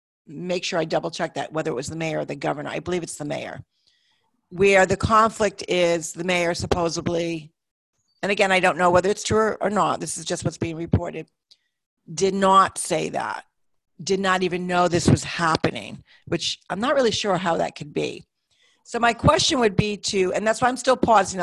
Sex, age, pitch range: female, 40-59, 170-215 Hz